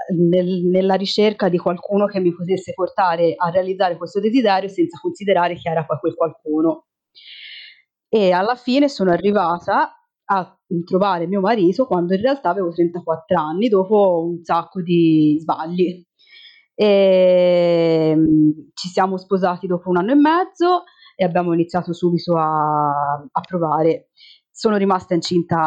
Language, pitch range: Italian, 170-205 Hz